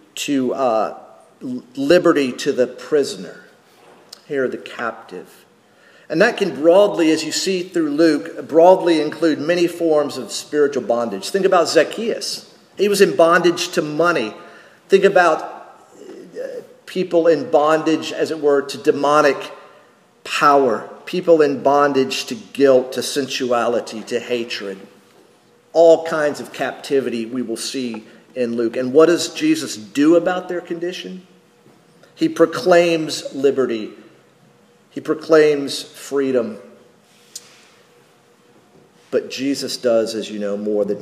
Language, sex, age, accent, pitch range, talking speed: English, male, 50-69, American, 130-170 Hz, 125 wpm